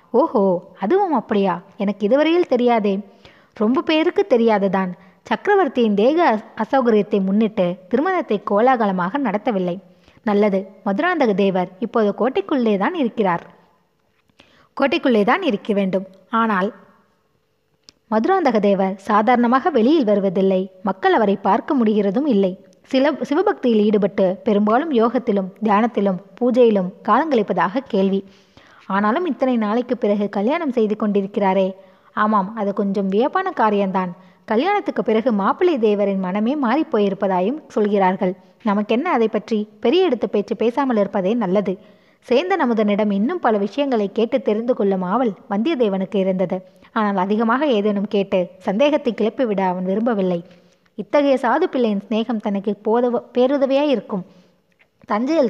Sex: female